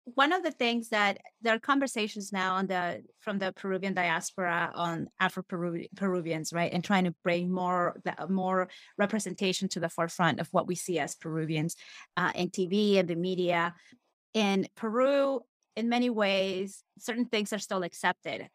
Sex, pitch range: female, 185-230 Hz